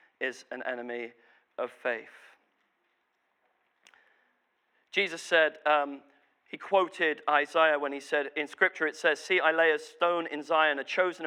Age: 40-59